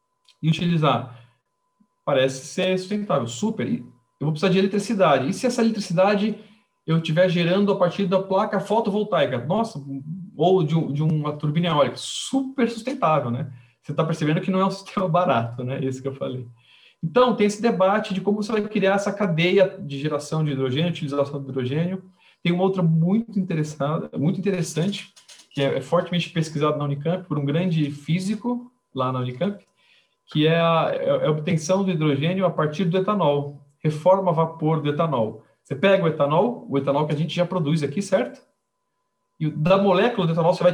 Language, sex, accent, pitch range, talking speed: Portuguese, male, Brazilian, 145-190 Hz, 175 wpm